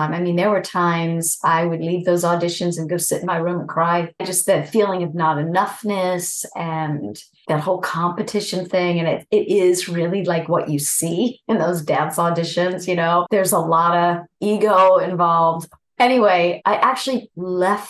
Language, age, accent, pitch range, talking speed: English, 40-59, American, 170-205 Hz, 180 wpm